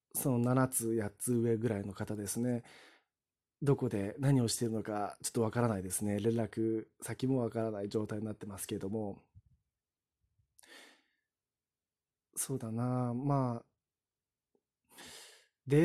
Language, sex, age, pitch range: Japanese, male, 20-39, 115-150 Hz